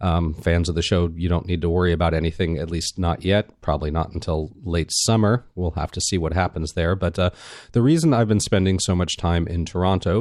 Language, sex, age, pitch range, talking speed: English, male, 40-59, 85-105 Hz, 235 wpm